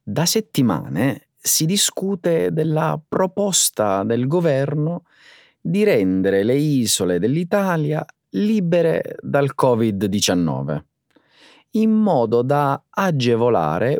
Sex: male